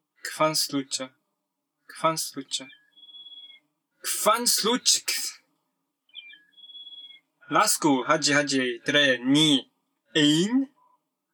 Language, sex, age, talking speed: English, male, 20-39, 65 wpm